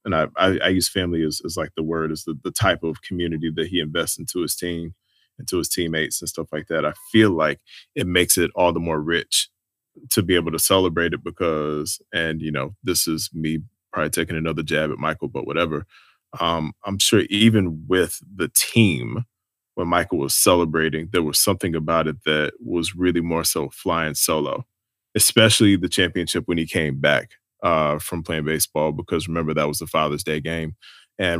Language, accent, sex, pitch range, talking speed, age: English, American, male, 80-95 Hz, 200 wpm, 20-39